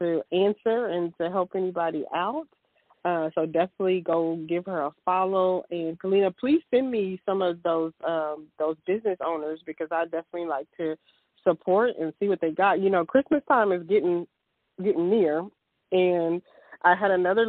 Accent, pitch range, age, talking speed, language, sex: American, 170-220 Hz, 20-39, 170 wpm, English, female